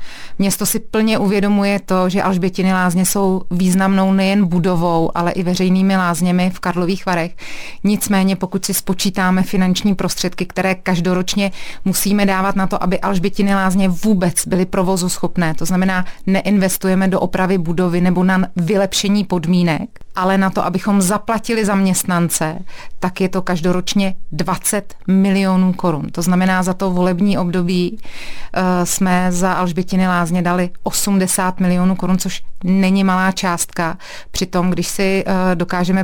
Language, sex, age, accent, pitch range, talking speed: Czech, female, 30-49, native, 175-190 Hz, 140 wpm